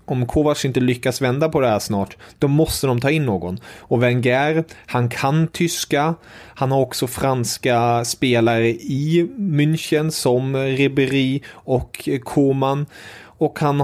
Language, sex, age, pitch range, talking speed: English, male, 30-49, 115-140 Hz, 145 wpm